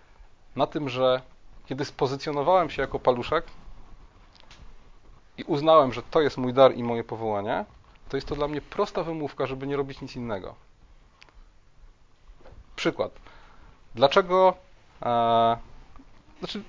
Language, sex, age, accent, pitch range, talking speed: Polish, male, 30-49, native, 120-145 Hz, 115 wpm